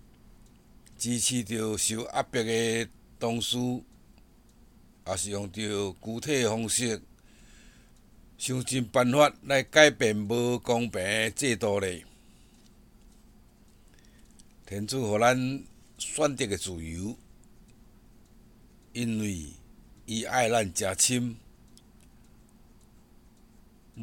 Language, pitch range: Chinese, 105-130 Hz